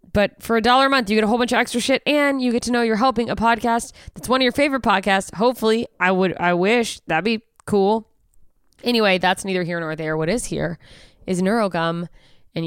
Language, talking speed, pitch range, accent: English, 230 wpm, 165-220 Hz, American